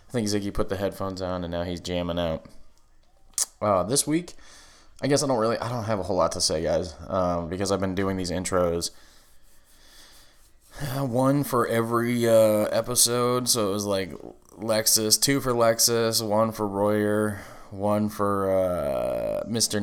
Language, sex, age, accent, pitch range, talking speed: English, male, 20-39, American, 100-125 Hz, 175 wpm